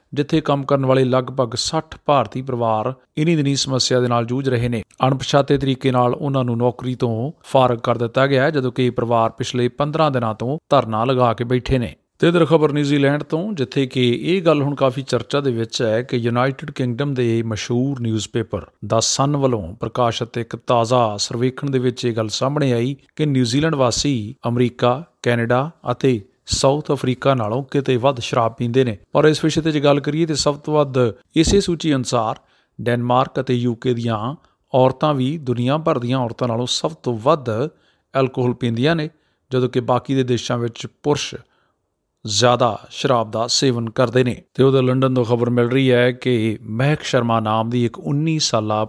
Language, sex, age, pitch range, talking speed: Punjabi, male, 40-59, 120-140 Hz, 165 wpm